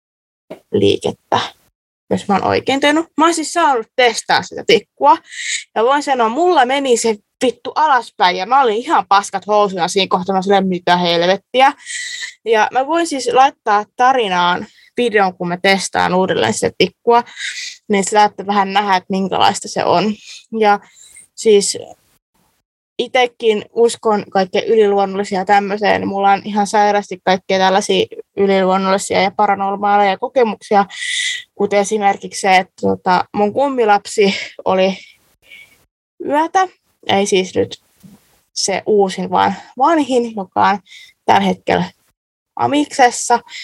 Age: 20-39